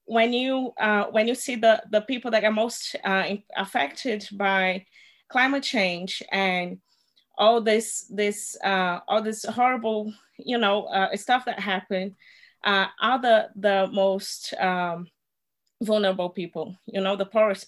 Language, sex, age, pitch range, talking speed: English, female, 20-39, 195-225 Hz, 145 wpm